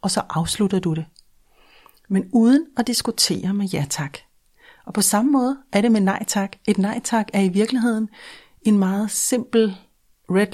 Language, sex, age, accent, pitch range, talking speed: Danish, female, 30-49, native, 185-230 Hz, 175 wpm